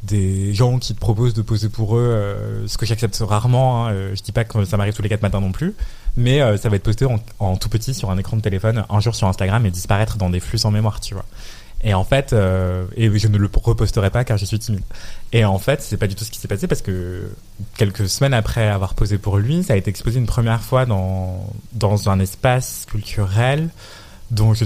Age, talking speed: 20-39, 255 wpm